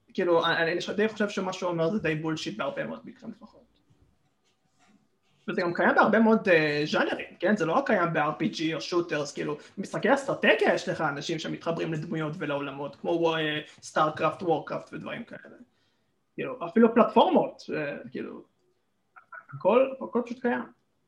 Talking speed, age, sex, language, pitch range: 150 wpm, 20-39, male, Hebrew, 155-225 Hz